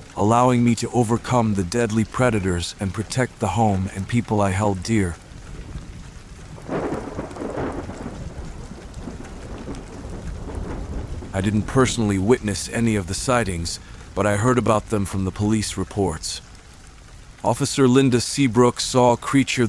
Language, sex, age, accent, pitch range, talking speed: English, male, 40-59, American, 95-125 Hz, 120 wpm